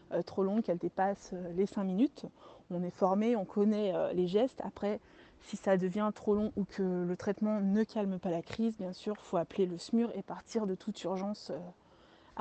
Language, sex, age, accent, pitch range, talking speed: French, female, 20-39, French, 185-210 Hz, 220 wpm